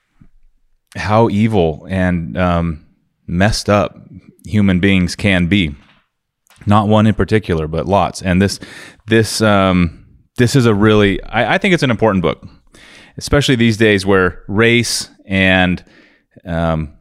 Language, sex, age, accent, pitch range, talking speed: English, male, 30-49, American, 100-120 Hz, 135 wpm